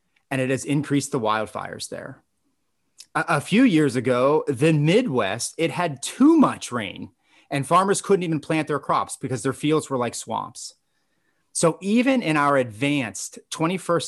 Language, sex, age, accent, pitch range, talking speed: English, male, 30-49, American, 125-160 Hz, 160 wpm